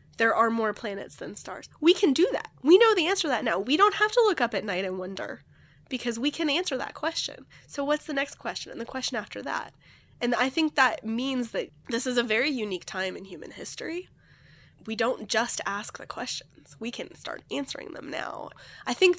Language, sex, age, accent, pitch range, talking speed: English, female, 10-29, American, 195-280 Hz, 225 wpm